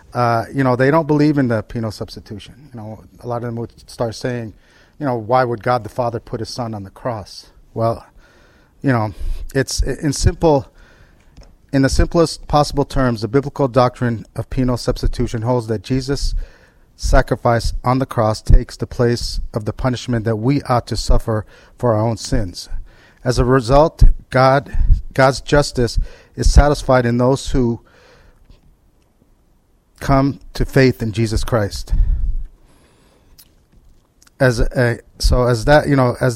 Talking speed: 160 wpm